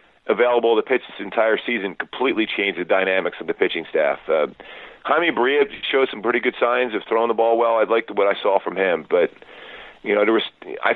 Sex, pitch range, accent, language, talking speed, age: male, 110-130 Hz, American, English, 220 wpm, 40-59